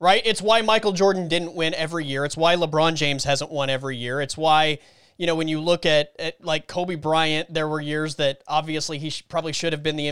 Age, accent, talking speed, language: 30-49, American, 245 wpm, English